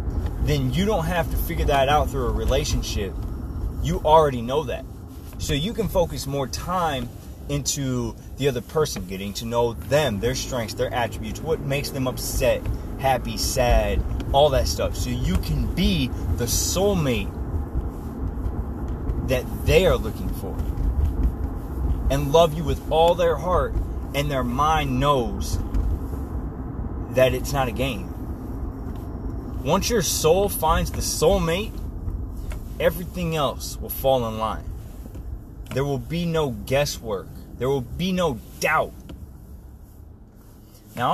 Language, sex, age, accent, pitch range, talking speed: English, male, 30-49, American, 90-135 Hz, 135 wpm